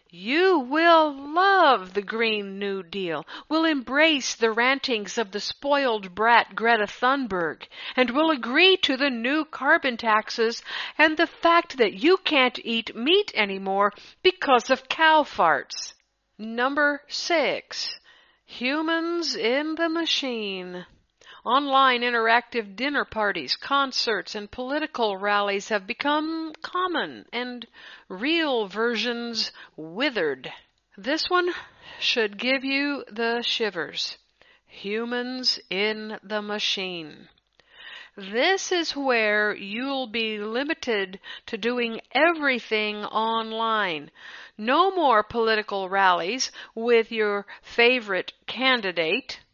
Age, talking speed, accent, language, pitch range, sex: 60-79, 105 wpm, American, English, 215-300 Hz, female